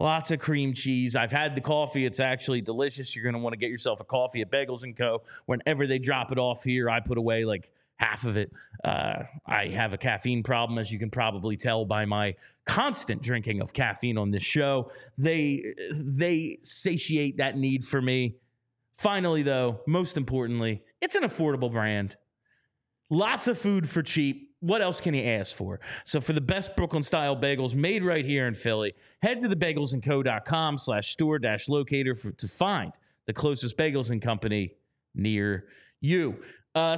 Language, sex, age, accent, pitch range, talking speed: English, male, 30-49, American, 120-160 Hz, 180 wpm